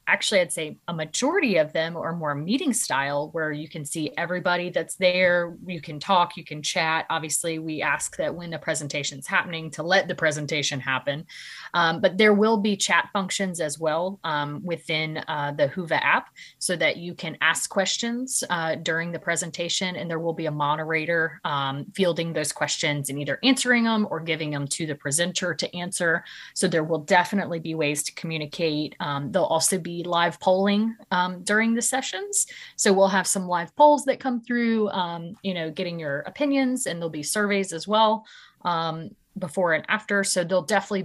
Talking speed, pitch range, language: 195 wpm, 150-190 Hz, English